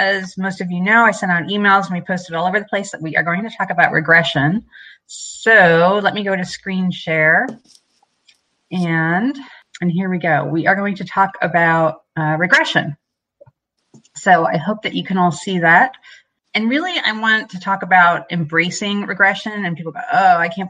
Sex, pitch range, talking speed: female, 155-190 Hz, 195 wpm